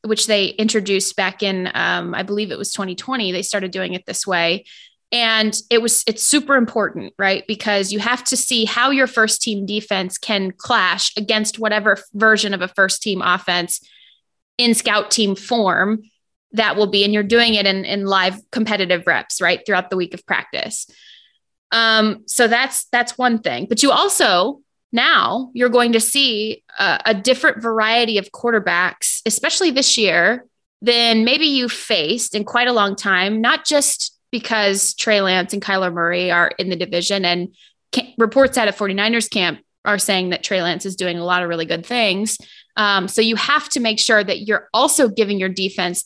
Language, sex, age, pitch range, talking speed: English, female, 20-39, 195-235 Hz, 185 wpm